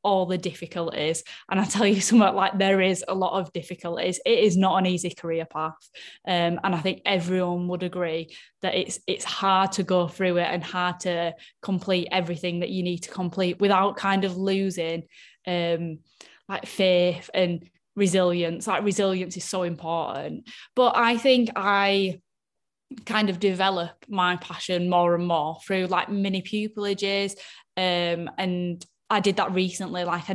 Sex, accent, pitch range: female, British, 180-200 Hz